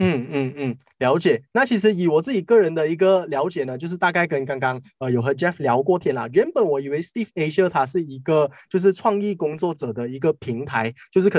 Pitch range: 130-190 Hz